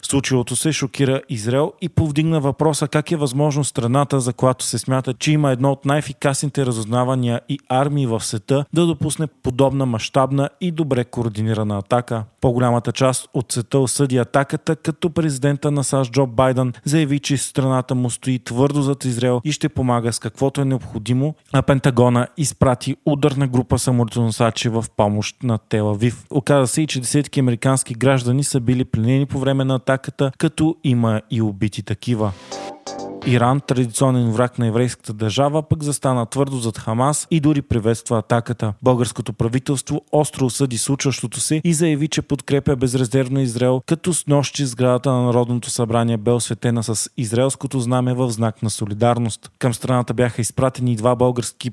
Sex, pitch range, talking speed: male, 120-140 Hz, 160 wpm